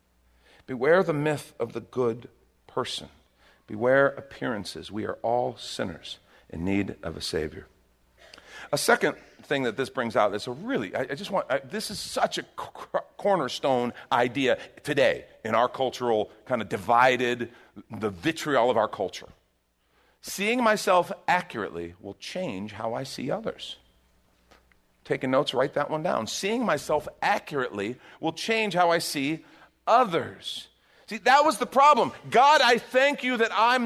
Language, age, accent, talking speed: English, 50-69, American, 150 wpm